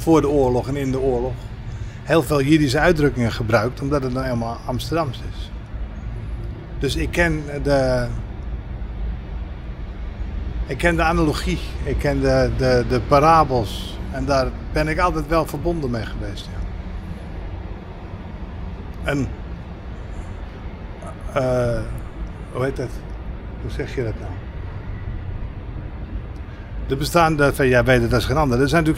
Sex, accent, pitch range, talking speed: male, Dutch, 95-150 Hz, 125 wpm